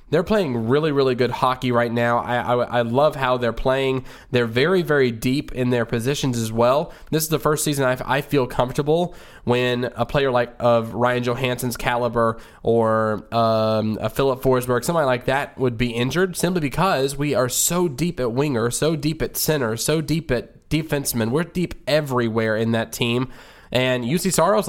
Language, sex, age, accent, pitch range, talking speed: English, male, 20-39, American, 120-150 Hz, 185 wpm